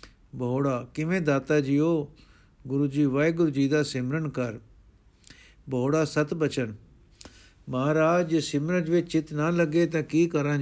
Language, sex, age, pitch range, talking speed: Punjabi, male, 60-79, 130-155 Hz, 130 wpm